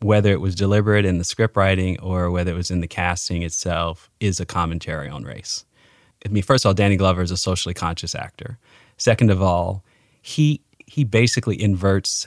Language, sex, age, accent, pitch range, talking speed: English, male, 30-49, American, 90-105 Hz, 195 wpm